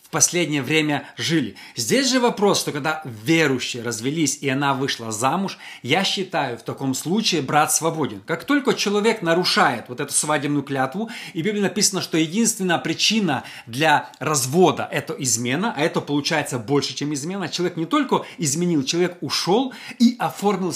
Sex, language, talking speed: male, Russian, 155 wpm